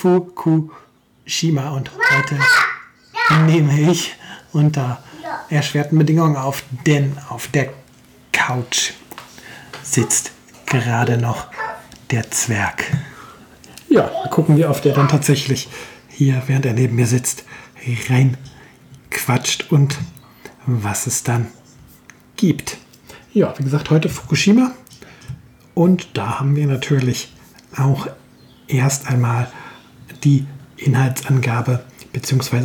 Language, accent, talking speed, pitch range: German, German, 95 wpm, 130-150 Hz